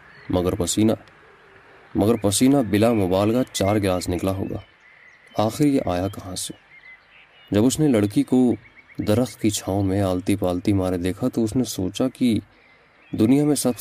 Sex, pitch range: male, 95-115 Hz